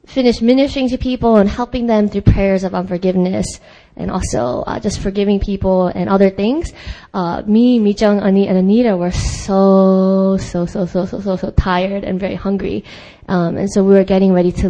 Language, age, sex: English, 20-39, female